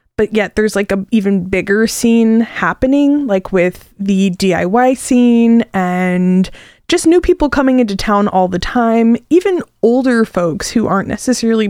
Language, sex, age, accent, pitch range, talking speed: English, female, 20-39, American, 185-225 Hz, 155 wpm